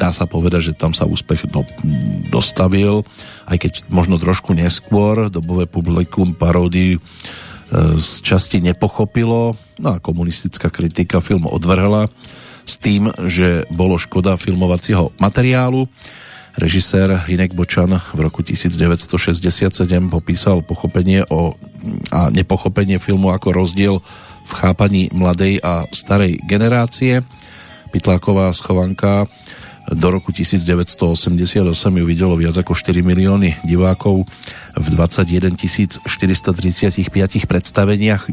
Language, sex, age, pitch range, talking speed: Slovak, male, 40-59, 90-100 Hz, 110 wpm